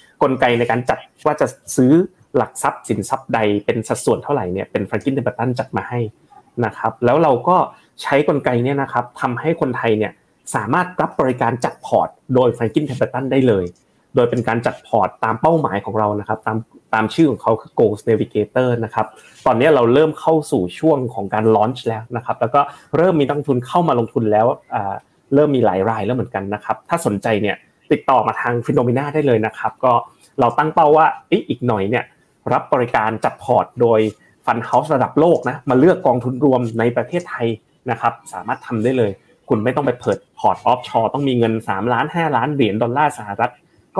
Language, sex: Thai, male